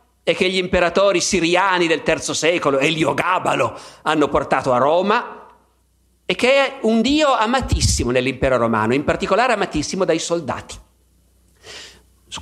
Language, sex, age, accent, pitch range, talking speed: Italian, male, 50-69, native, 140-220 Hz, 130 wpm